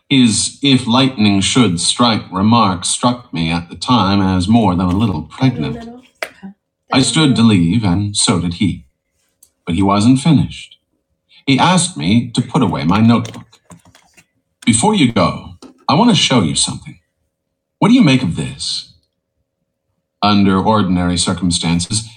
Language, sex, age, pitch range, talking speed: English, male, 50-69, 90-125 Hz, 140 wpm